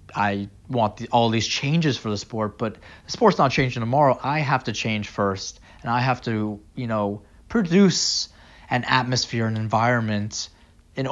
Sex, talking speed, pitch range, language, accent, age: male, 165 wpm, 105-145 Hz, English, American, 20-39